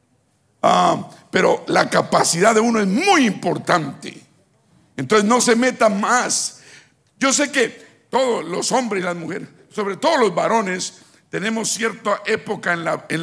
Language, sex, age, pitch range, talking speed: Spanish, male, 60-79, 150-215 Hz, 145 wpm